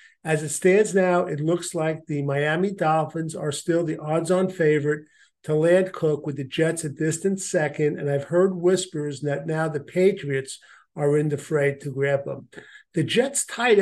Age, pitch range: 50-69, 150-185 Hz